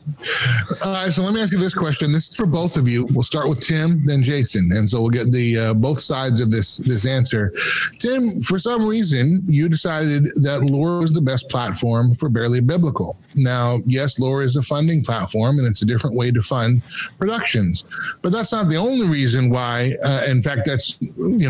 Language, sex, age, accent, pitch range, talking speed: English, male, 30-49, American, 120-150 Hz, 210 wpm